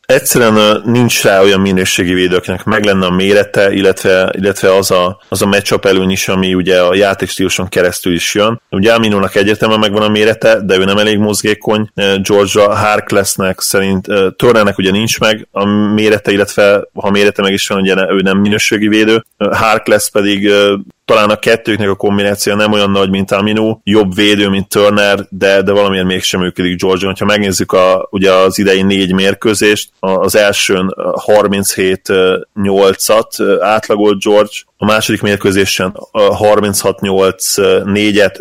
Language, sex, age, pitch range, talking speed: Hungarian, male, 20-39, 95-105 Hz, 150 wpm